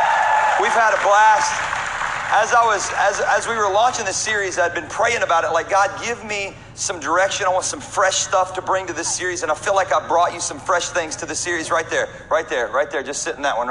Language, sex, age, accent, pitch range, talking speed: English, male, 40-59, American, 150-195 Hz, 260 wpm